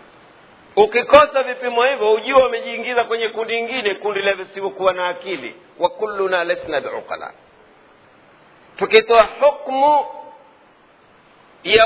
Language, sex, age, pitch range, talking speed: Swahili, male, 50-69, 190-240 Hz, 100 wpm